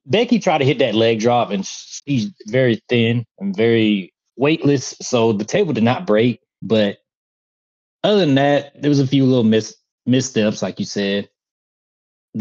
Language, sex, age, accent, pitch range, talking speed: English, male, 30-49, American, 110-155 Hz, 165 wpm